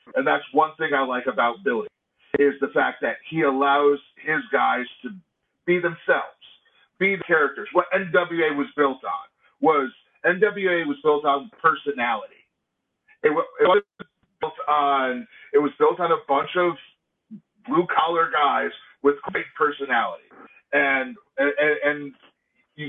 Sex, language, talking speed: male, English, 155 wpm